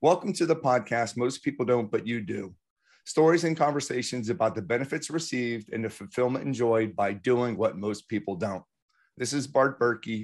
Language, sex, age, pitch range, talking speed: English, male, 40-59, 115-135 Hz, 180 wpm